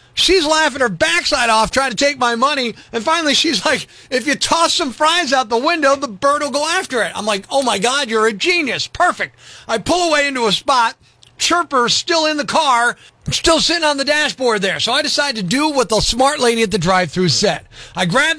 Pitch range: 225-315 Hz